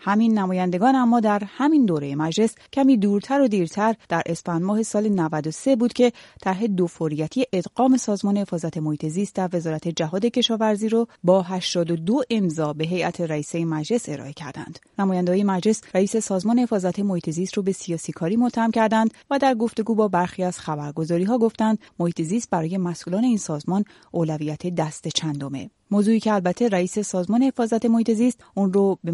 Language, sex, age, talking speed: Persian, female, 30-49, 170 wpm